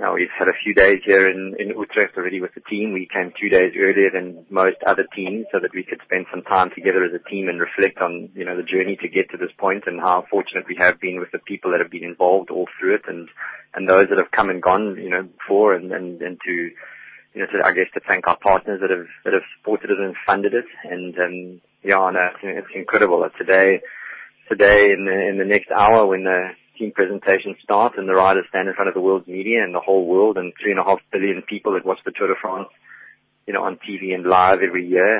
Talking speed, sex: 255 wpm, male